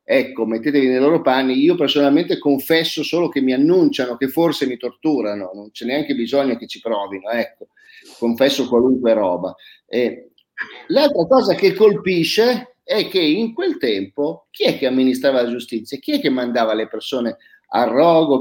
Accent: native